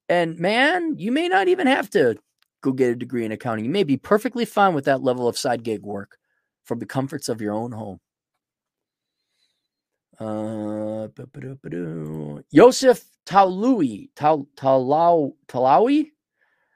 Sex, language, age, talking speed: male, English, 30-49, 130 wpm